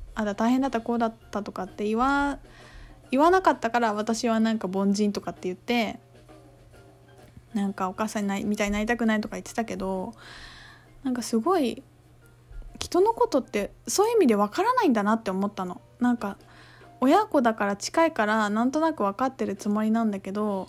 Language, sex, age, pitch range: Japanese, female, 20-39, 190-260 Hz